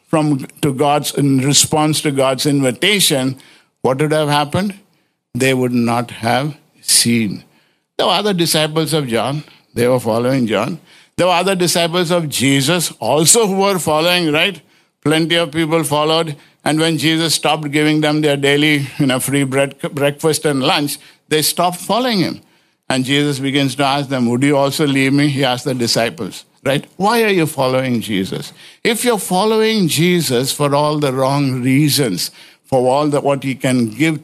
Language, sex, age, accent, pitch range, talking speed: English, male, 60-79, Indian, 130-160 Hz, 170 wpm